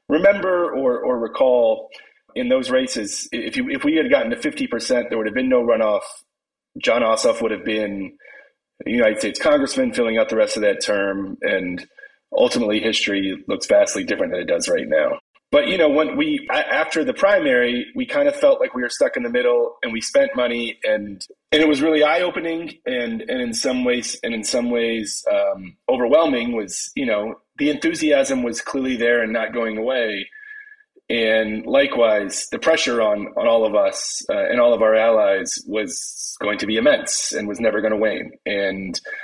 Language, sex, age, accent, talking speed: English, male, 30-49, American, 195 wpm